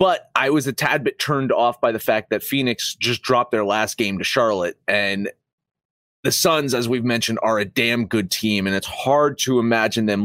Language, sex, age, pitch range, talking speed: English, male, 30-49, 110-155 Hz, 215 wpm